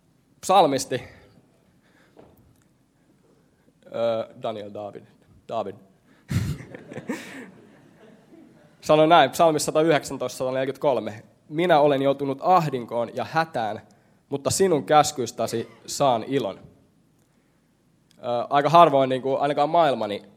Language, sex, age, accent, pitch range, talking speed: Finnish, male, 20-39, native, 115-150 Hz, 70 wpm